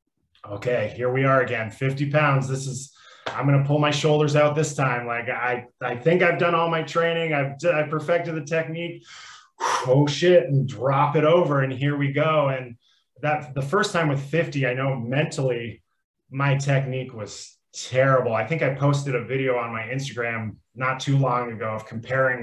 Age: 20-39